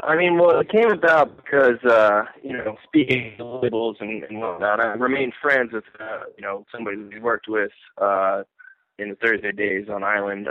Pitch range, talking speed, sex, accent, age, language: 115-155 Hz, 195 wpm, male, American, 20-39, English